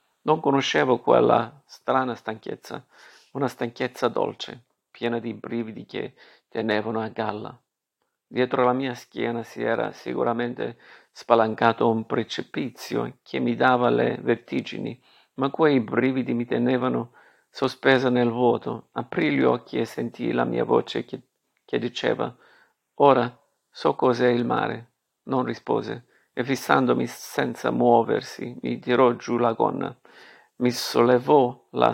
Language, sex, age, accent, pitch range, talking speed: Italian, male, 50-69, native, 115-130 Hz, 125 wpm